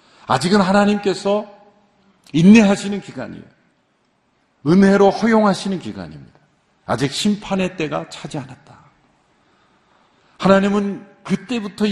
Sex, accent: male, native